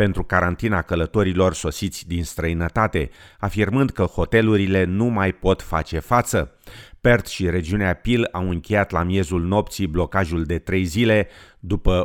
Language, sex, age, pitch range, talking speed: Romanian, male, 30-49, 85-105 Hz, 140 wpm